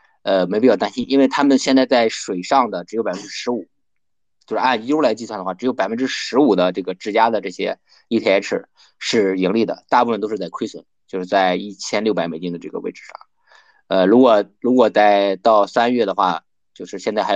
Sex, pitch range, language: male, 95-130 Hz, Chinese